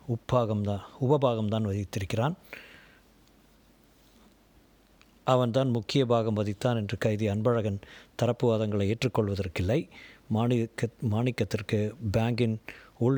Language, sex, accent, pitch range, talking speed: Tamil, male, native, 105-120 Hz, 75 wpm